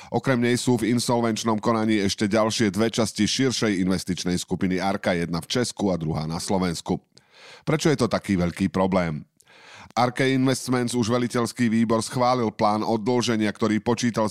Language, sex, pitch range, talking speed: Slovak, male, 95-120 Hz, 155 wpm